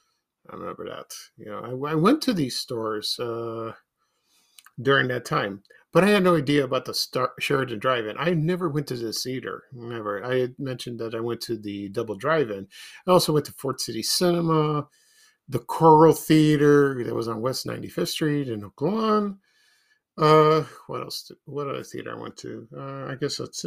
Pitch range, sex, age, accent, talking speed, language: 115-160 Hz, male, 50-69, American, 185 wpm, English